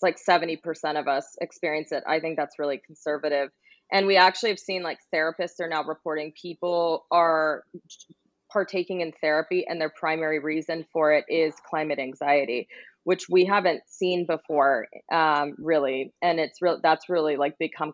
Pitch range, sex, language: 155-190 Hz, female, English